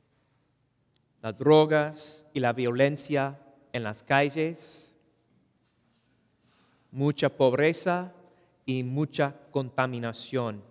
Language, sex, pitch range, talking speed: English, male, 135-180 Hz, 75 wpm